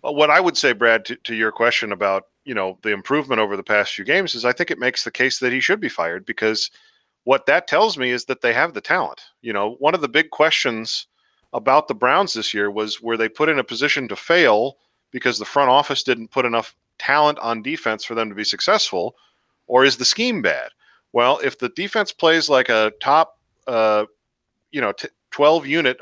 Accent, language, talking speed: American, English, 225 wpm